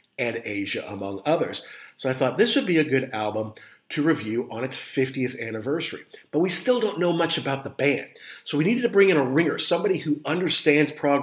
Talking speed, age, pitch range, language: 215 wpm, 40-59, 125-190 Hz, English